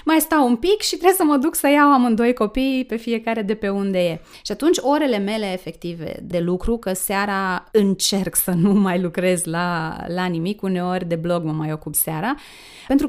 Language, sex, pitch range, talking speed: Romanian, female, 180-250 Hz, 200 wpm